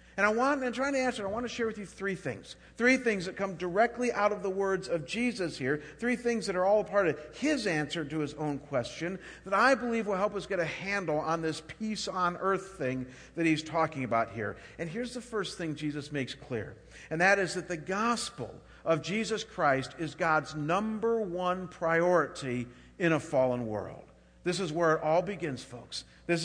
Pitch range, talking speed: 155-200 Hz, 215 wpm